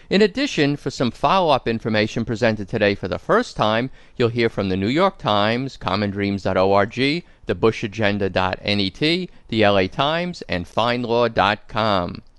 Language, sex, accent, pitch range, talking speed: English, male, American, 105-145 Hz, 130 wpm